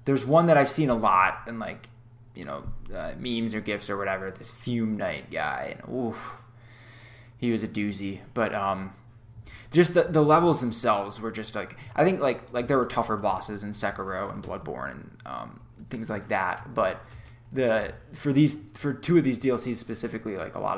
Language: English